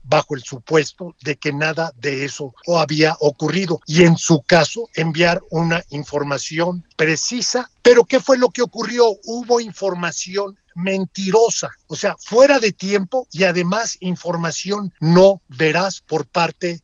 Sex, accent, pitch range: male, Mexican, 160-210 Hz